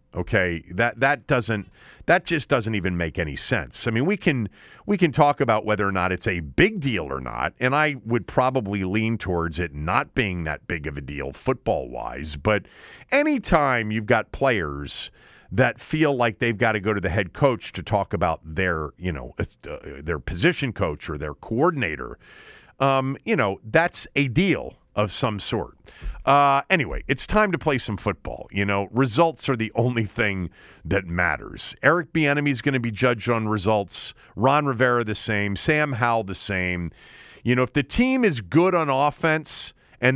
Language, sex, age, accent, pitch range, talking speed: English, male, 40-59, American, 100-140 Hz, 185 wpm